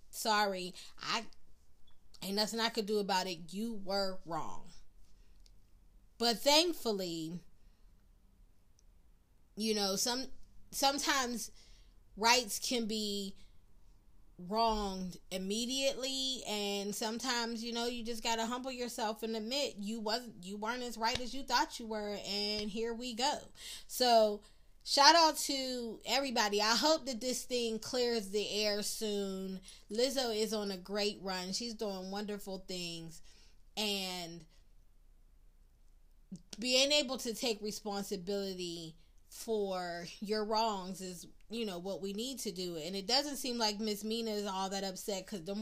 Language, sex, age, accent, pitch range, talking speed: English, female, 20-39, American, 180-240 Hz, 135 wpm